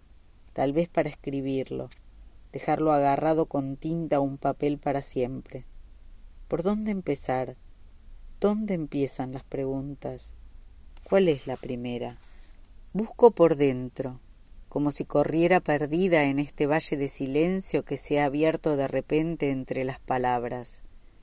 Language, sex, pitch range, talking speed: Spanish, female, 120-165 Hz, 125 wpm